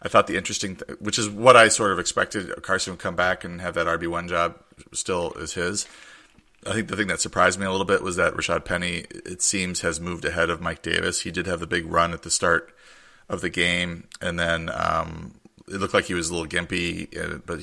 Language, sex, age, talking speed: English, male, 30-49, 240 wpm